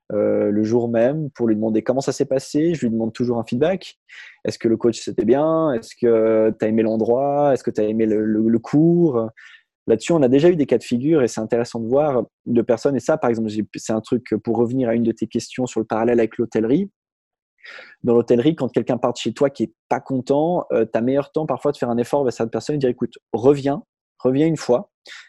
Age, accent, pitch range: 20-39, French, 115-145 Hz